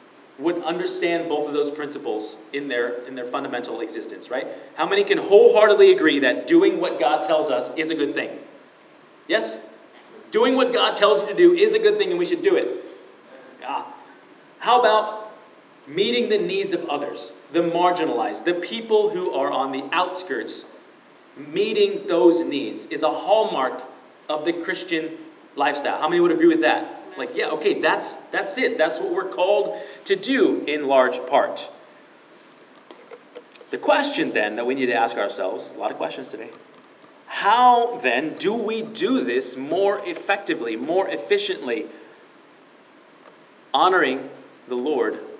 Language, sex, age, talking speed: English, male, 30-49, 155 wpm